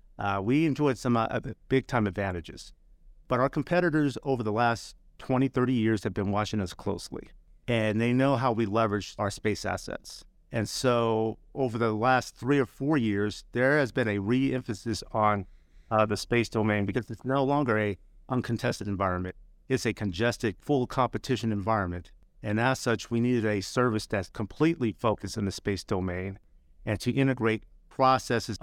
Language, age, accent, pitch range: English, 50-69, American, 100-125 Hz